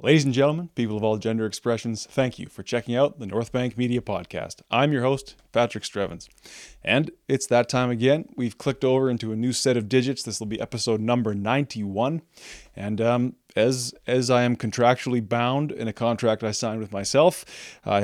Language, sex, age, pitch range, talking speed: English, male, 30-49, 105-125 Hz, 195 wpm